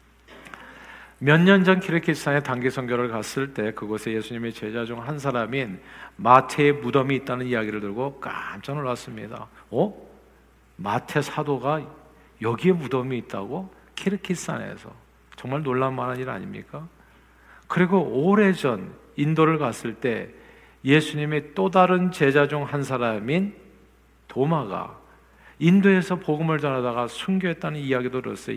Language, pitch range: Korean, 125-180 Hz